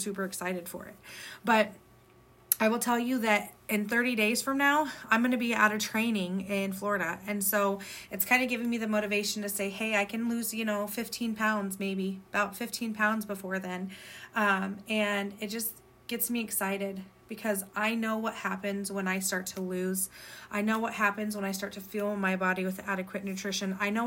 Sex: female